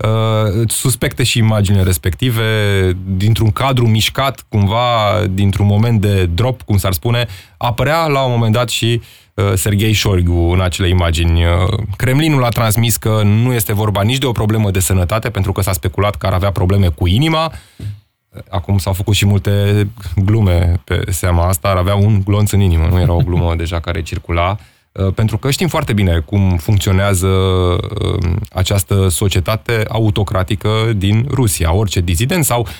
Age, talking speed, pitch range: 20-39, 155 wpm, 95-110 Hz